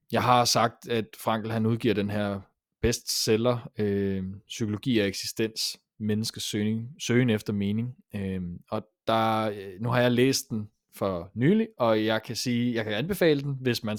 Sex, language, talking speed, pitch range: male, Danish, 165 wpm, 105-125 Hz